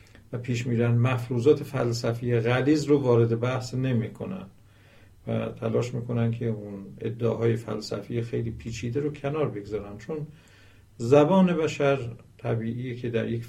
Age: 50-69